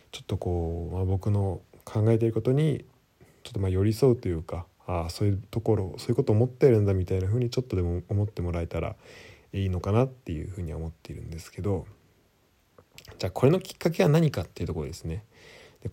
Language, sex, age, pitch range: Japanese, male, 20-39, 95-125 Hz